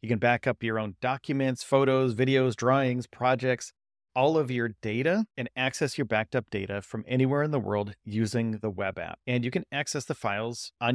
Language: English